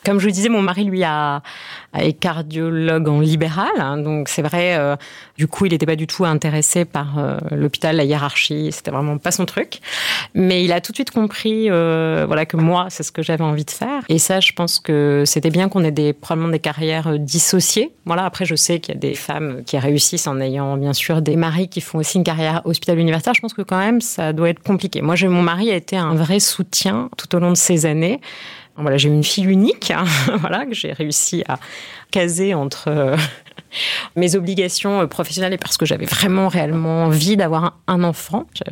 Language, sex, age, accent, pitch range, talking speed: French, female, 30-49, French, 150-185 Hz, 220 wpm